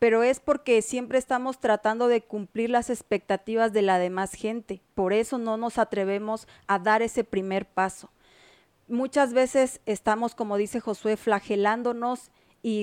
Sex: female